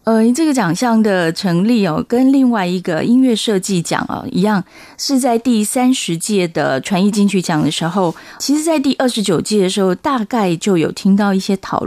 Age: 30-49